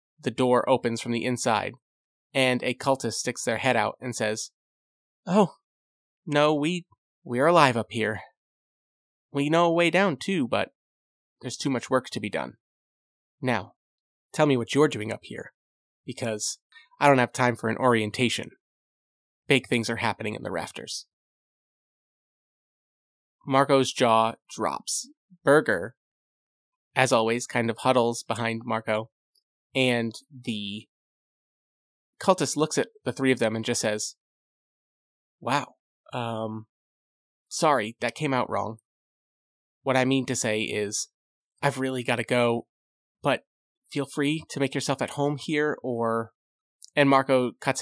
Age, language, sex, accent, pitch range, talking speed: 30-49, English, male, American, 115-140 Hz, 145 wpm